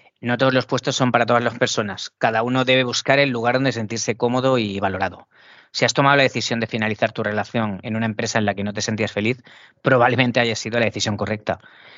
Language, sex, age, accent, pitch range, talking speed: English, female, 30-49, Spanish, 105-125 Hz, 225 wpm